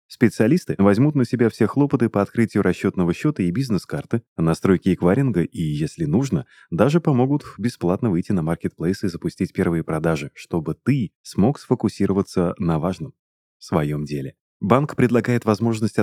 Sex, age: male, 30-49